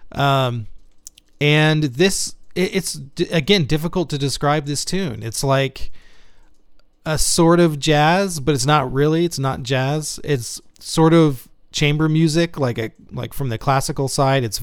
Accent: American